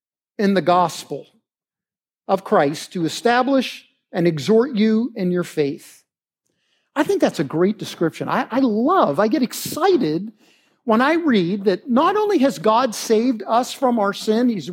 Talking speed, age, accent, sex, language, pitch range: 160 wpm, 50-69, American, male, English, 195-275 Hz